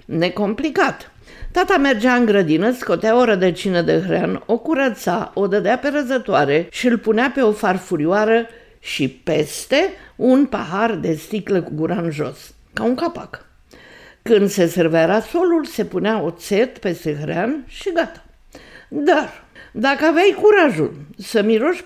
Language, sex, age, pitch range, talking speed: Romanian, female, 50-69, 185-275 Hz, 140 wpm